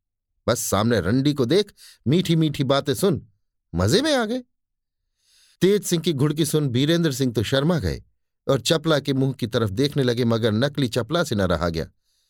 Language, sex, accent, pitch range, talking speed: Hindi, male, native, 115-165 Hz, 185 wpm